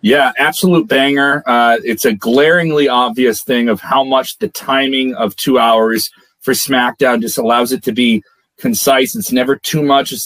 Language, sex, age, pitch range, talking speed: English, male, 30-49, 125-150 Hz, 175 wpm